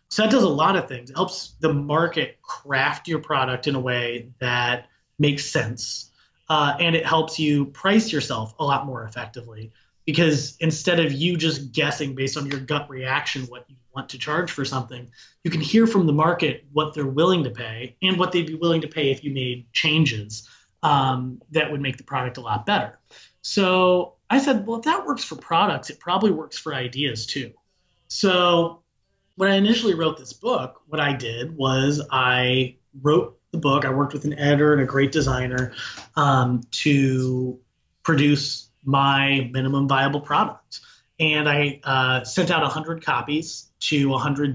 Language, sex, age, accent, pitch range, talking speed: English, male, 30-49, American, 130-160 Hz, 180 wpm